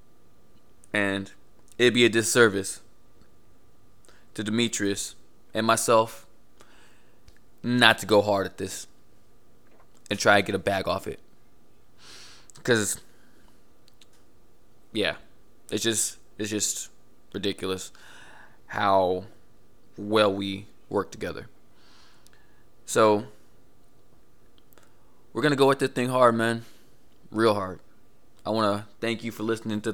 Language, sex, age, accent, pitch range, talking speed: English, male, 20-39, American, 100-120 Hz, 105 wpm